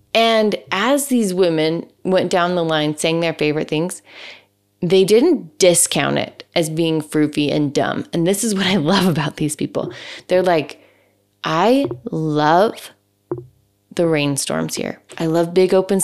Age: 20-39